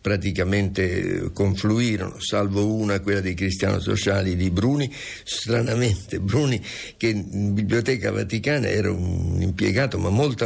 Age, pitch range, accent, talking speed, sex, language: 60-79, 95-110 Hz, native, 120 wpm, male, Italian